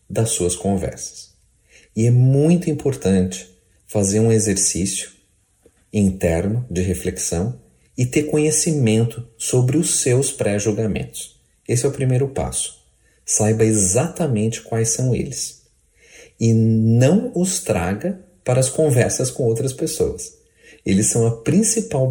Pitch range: 90-130 Hz